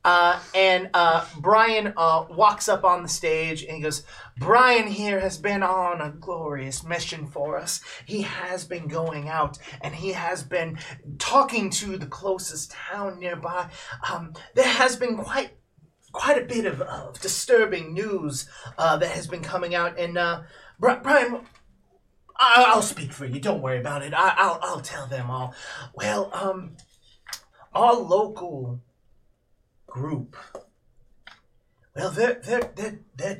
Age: 30-49